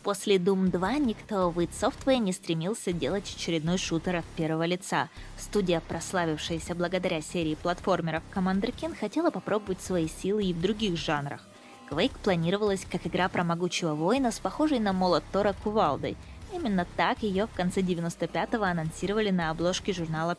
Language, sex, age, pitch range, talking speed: Russian, female, 20-39, 170-200 Hz, 155 wpm